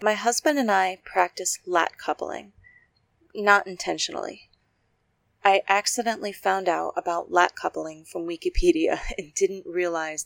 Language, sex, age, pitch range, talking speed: English, female, 30-49, 170-210 Hz, 125 wpm